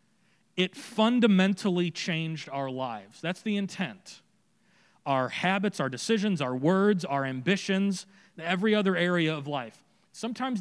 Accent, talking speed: American, 125 wpm